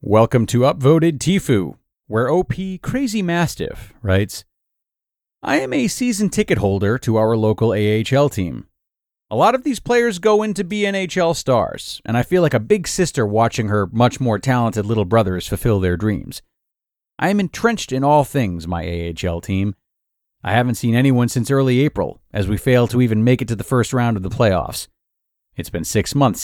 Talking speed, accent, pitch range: 185 wpm, American, 100-145 Hz